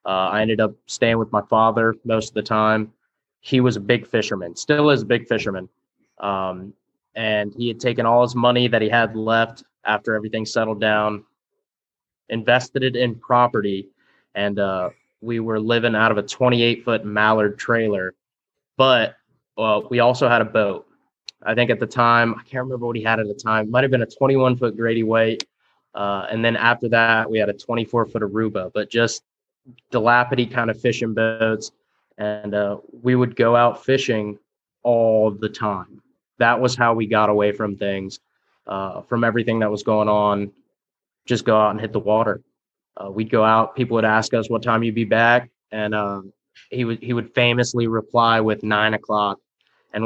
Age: 20-39